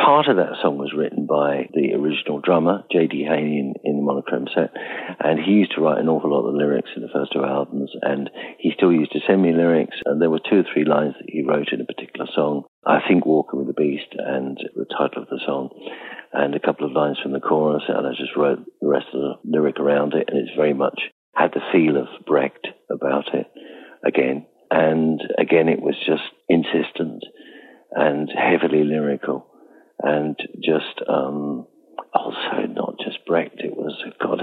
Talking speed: 200 wpm